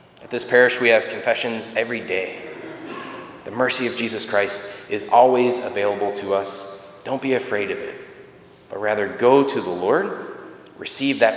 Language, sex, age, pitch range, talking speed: English, male, 30-49, 100-120 Hz, 165 wpm